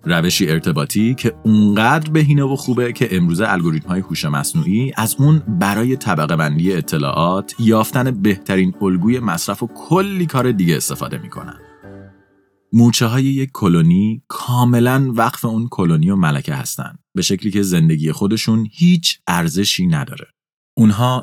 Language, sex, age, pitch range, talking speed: Persian, male, 30-49, 95-135 Hz, 140 wpm